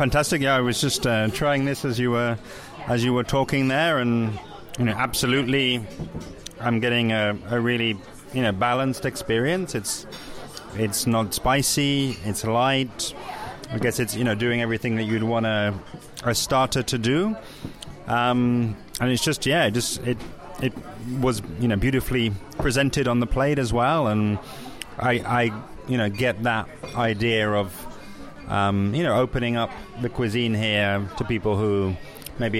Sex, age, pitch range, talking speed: male, 30-49, 100-125 Hz, 160 wpm